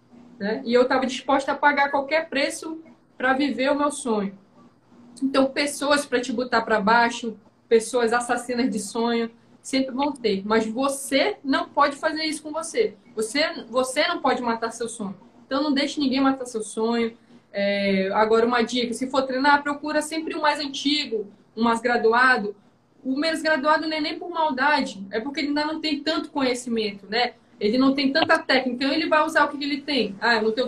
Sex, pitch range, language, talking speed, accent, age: female, 235-295 Hz, Portuguese, 200 wpm, Brazilian, 20-39